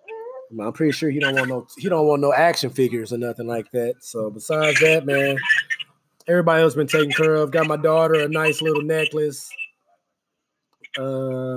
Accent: American